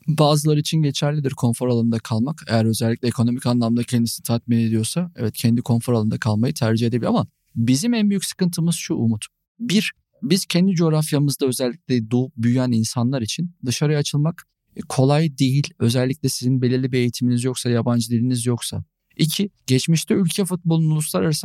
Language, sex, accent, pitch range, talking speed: Turkish, male, native, 120-155 Hz, 150 wpm